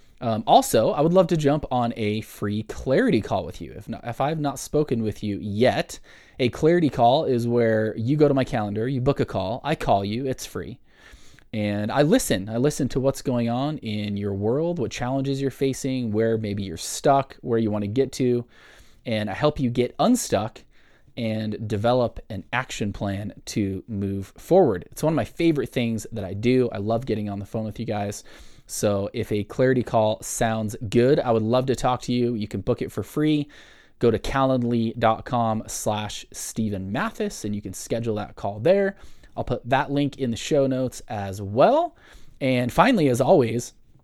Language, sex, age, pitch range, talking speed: English, male, 20-39, 105-135 Hz, 200 wpm